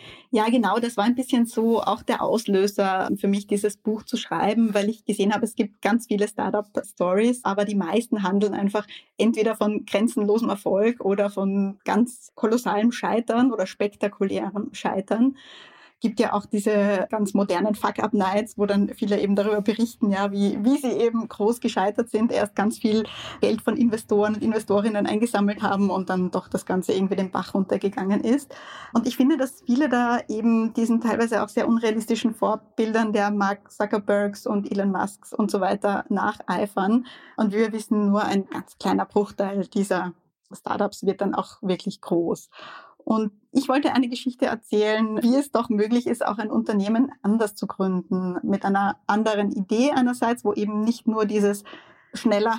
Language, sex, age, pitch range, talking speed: German, female, 20-39, 205-235 Hz, 170 wpm